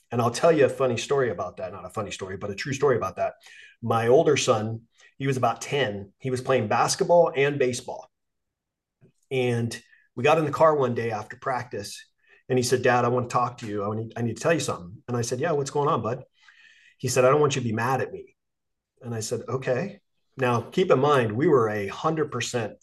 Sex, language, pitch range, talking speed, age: male, English, 110-140 Hz, 240 wpm, 30-49